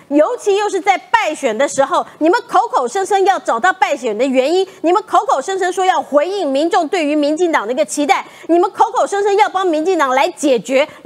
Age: 30-49